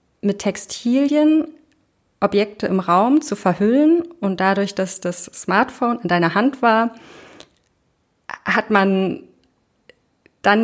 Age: 30-49